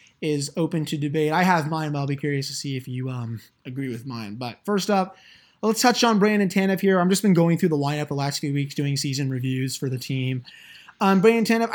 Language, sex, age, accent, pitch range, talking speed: English, male, 20-39, American, 145-185 Hz, 245 wpm